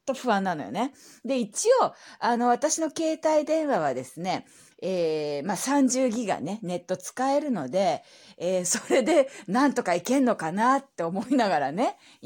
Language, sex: Japanese, female